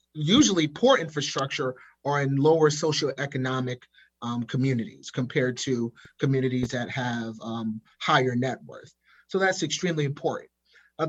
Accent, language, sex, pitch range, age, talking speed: American, English, male, 130-160 Hz, 30-49, 125 wpm